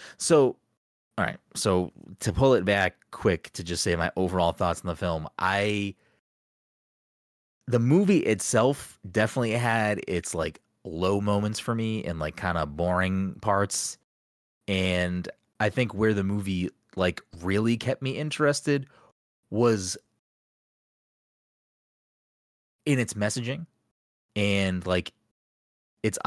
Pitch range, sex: 85-110 Hz, male